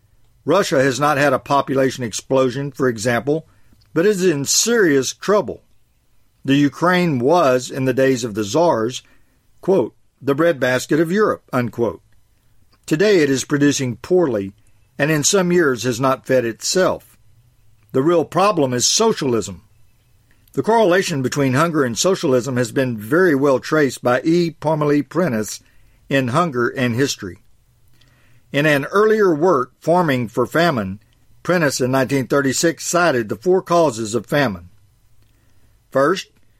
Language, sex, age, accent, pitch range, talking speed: English, male, 50-69, American, 115-155 Hz, 135 wpm